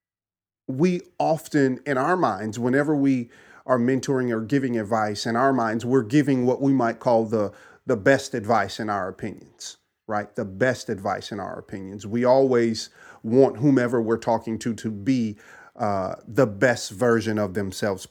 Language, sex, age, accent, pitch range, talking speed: English, male, 40-59, American, 105-135 Hz, 165 wpm